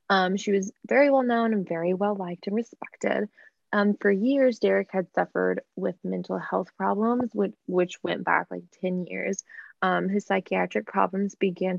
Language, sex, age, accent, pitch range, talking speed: English, female, 20-39, American, 180-205 Hz, 165 wpm